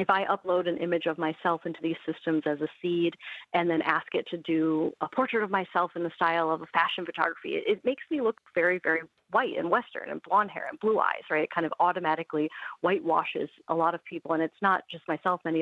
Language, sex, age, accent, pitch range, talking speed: English, female, 40-59, American, 160-195 Hz, 240 wpm